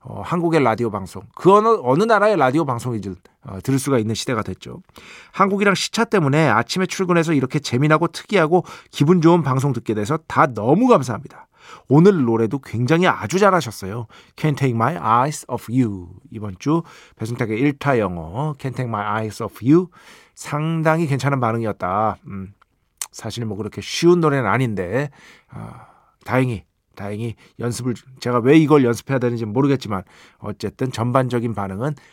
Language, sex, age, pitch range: Korean, male, 40-59, 110-160 Hz